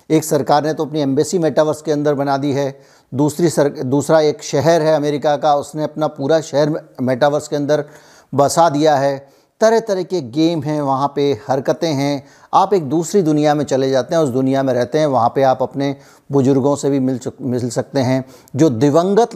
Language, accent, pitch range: Hindi, native, 135-155 Hz